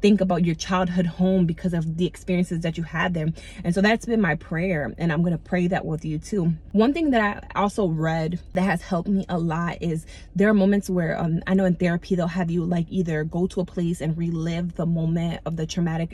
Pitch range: 160-185 Hz